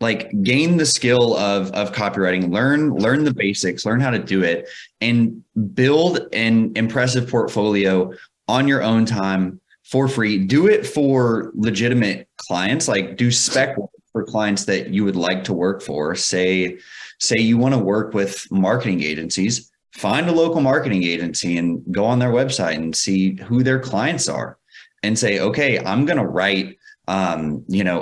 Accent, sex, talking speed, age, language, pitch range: American, male, 170 wpm, 30-49, English, 95-120 Hz